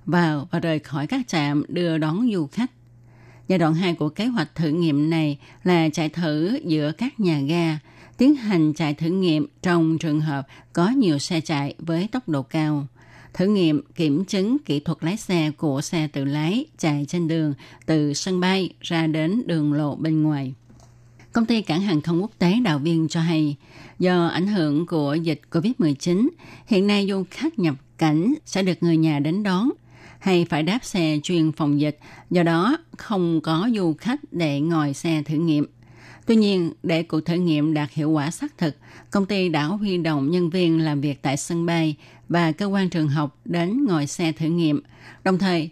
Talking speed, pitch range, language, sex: 195 wpm, 150-180 Hz, Vietnamese, female